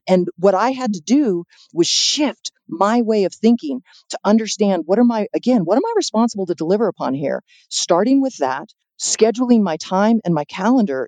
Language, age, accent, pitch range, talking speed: English, 40-59, American, 185-240 Hz, 190 wpm